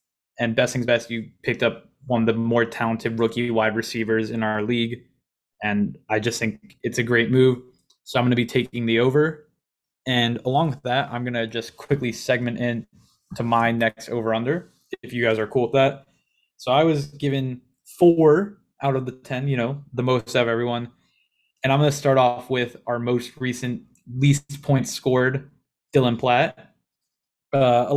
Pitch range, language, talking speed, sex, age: 120-135 Hz, English, 190 wpm, male, 20-39